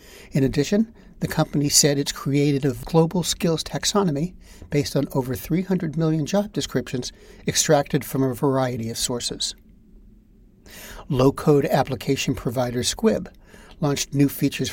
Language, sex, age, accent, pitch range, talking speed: English, male, 60-79, American, 135-170 Hz, 125 wpm